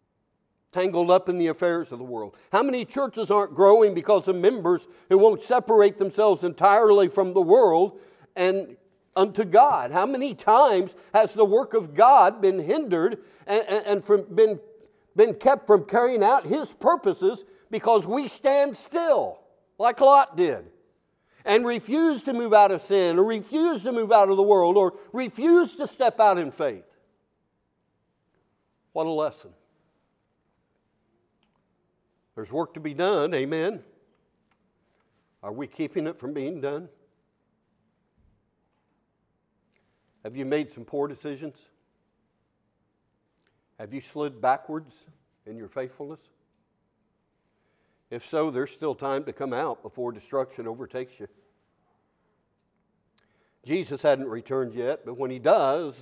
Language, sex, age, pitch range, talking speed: English, male, 60-79, 155-255 Hz, 135 wpm